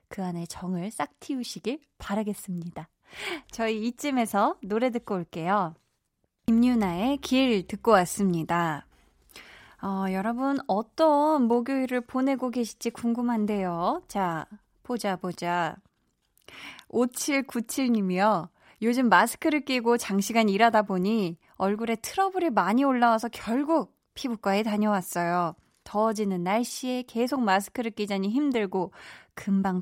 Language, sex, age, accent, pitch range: Korean, female, 20-39, native, 185-255 Hz